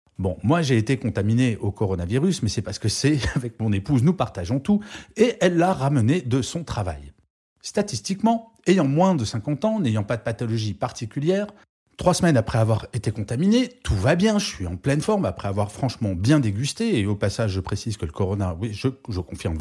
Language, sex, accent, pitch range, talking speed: French, male, French, 110-160 Hz, 205 wpm